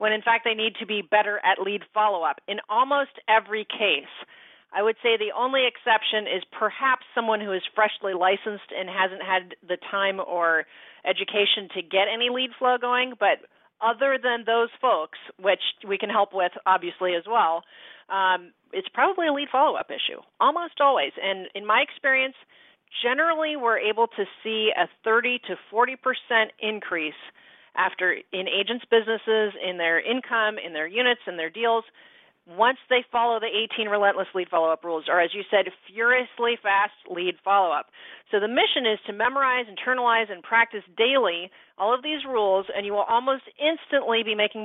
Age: 40-59